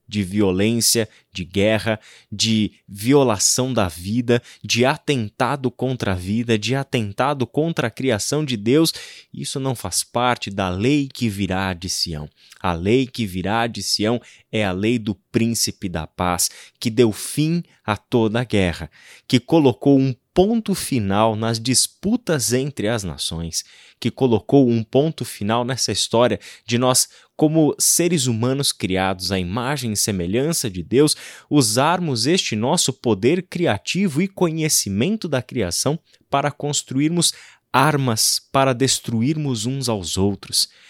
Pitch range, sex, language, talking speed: 105-140 Hz, male, Portuguese, 140 wpm